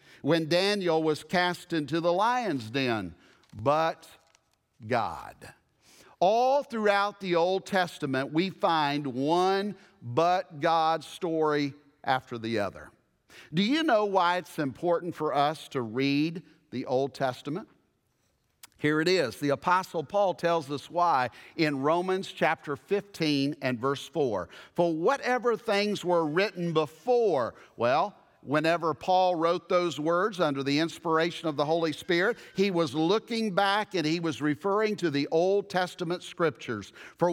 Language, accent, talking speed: English, American, 140 wpm